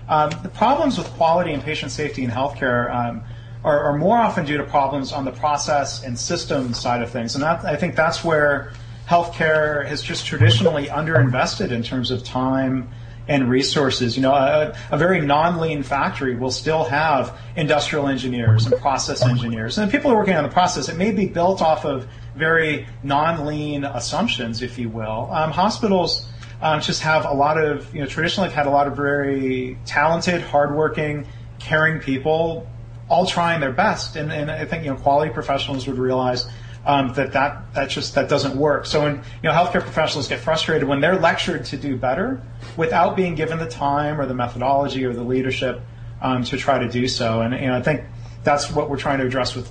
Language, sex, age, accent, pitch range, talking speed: English, male, 40-59, American, 125-155 Hz, 195 wpm